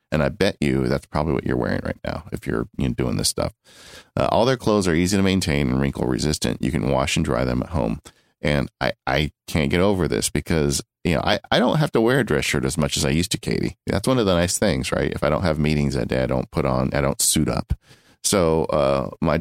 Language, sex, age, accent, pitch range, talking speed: English, male, 40-59, American, 70-90 Hz, 265 wpm